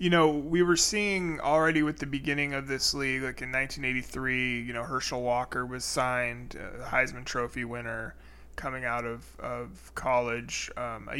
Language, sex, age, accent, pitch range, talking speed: English, male, 20-39, American, 120-135 Hz, 170 wpm